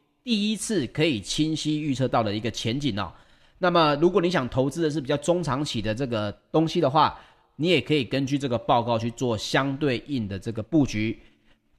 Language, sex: Chinese, male